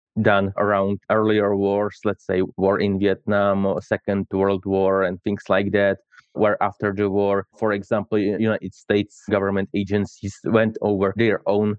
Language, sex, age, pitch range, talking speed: Ukrainian, male, 20-39, 100-110 Hz, 160 wpm